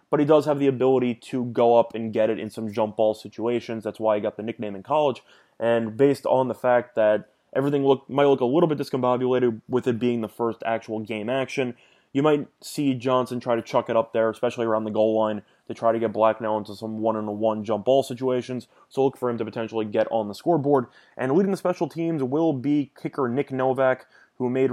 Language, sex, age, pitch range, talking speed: English, male, 20-39, 110-135 Hz, 230 wpm